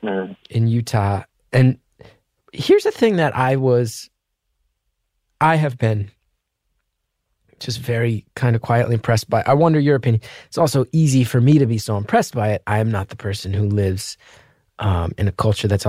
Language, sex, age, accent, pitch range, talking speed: English, male, 20-39, American, 110-150 Hz, 175 wpm